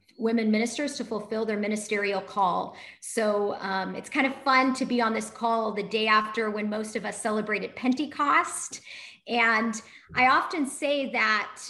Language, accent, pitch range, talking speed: English, American, 215-265 Hz, 165 wpm